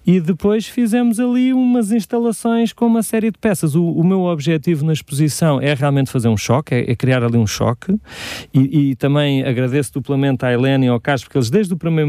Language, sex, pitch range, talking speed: Portuguese, male, 125-165 Hz, 215 wpm